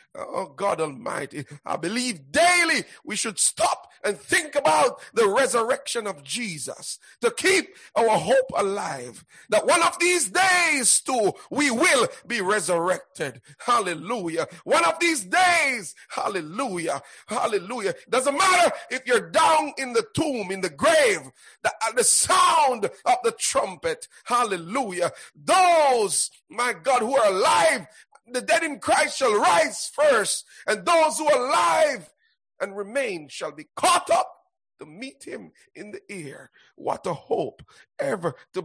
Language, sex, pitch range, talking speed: English, male, 230-380 Hz, 145 wpm